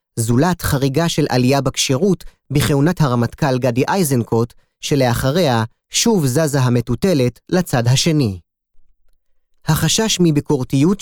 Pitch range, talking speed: 125-170 Hz, 95 wpm